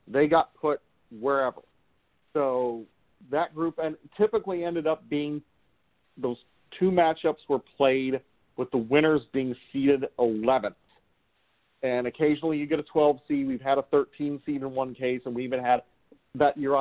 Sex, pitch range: male, 130-155 Hz